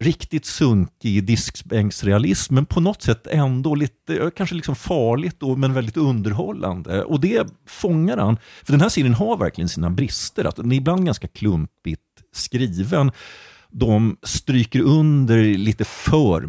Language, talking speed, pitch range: English, 145 wpm, 95-140 Hz